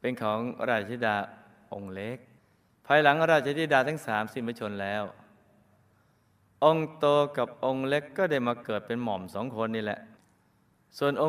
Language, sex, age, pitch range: Thai, male, 20-39, 110-140 Hz